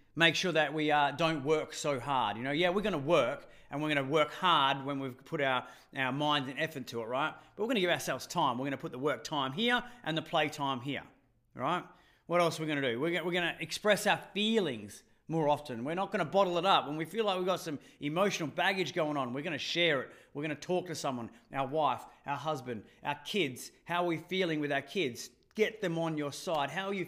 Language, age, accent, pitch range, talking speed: English, 30-49, Australian, 145-180 Hz, 250 wpm